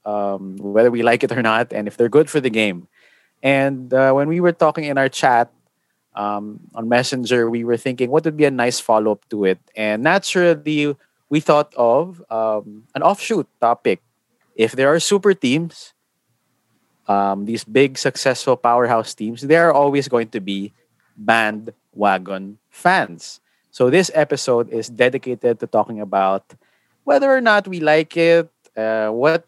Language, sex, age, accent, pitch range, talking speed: English, male, 20-39, Filipino, 110-150 Hz, 165 wpm